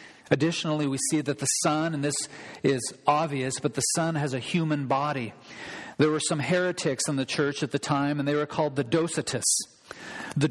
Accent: American